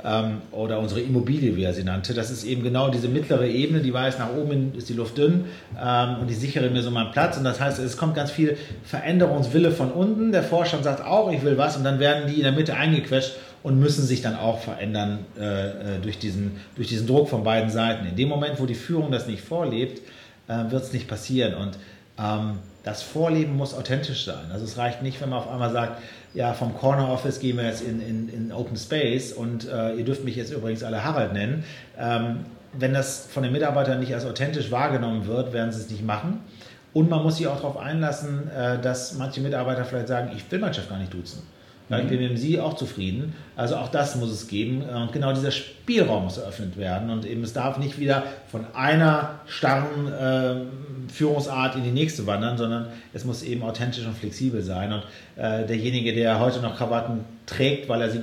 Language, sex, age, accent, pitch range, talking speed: German, male, 40-59, German, 115-140 Hz, 215 wpm